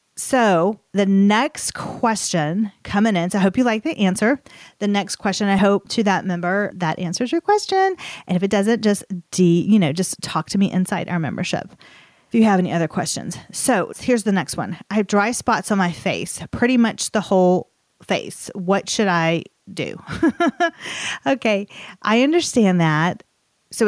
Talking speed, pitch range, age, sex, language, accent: 180 wpm, 185-240 Hz, 30-49, female, English, American